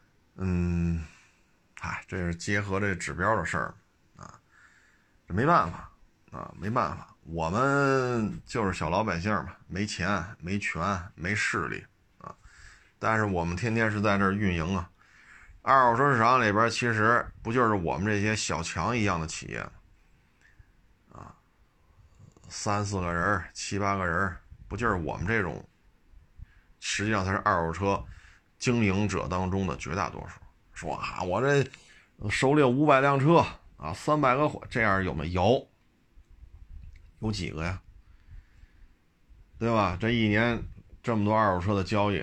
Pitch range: 85-110 Hz